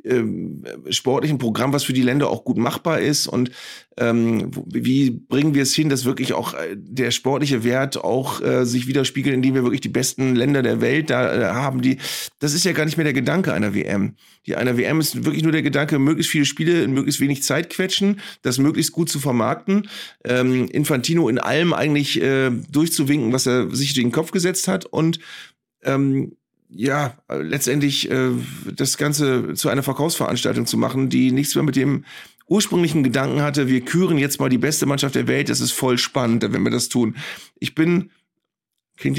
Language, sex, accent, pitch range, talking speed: German, male, German, 125-155 Hz, 190 wpm